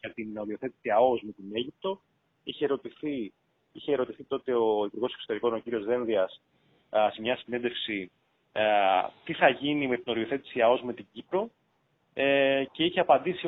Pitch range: 115-155 Hz